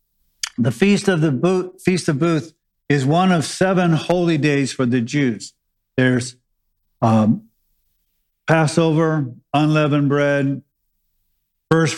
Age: 50-69